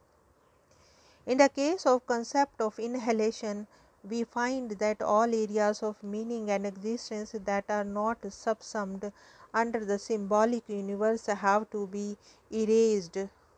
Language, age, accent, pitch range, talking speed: English, 50-69, Indian, 205-235 Hz, 125 wpm